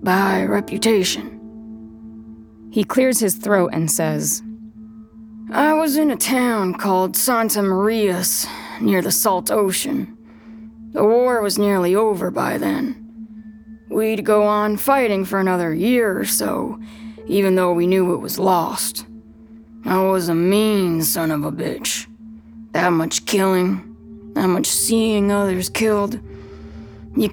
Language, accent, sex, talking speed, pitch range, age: English, American, female, 130 wpm, 175-225 Hz, 20-39